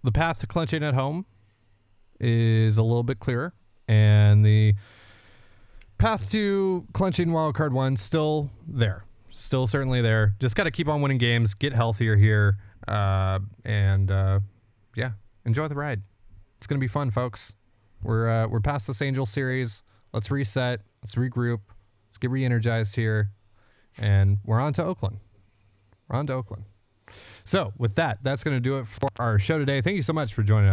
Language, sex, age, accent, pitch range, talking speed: English, male, 30-49, American, 100-135 Hz, 170 wpm